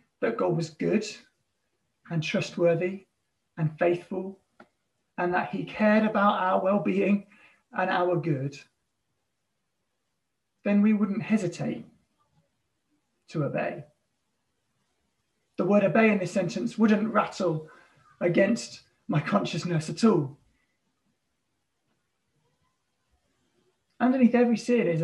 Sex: male